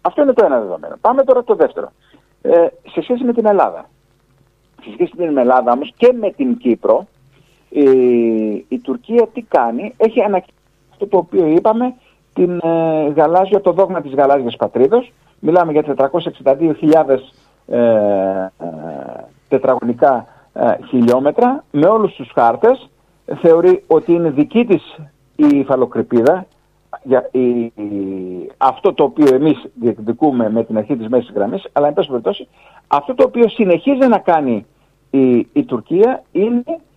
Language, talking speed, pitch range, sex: Greek, 145 wpm, 140-235 Hz, male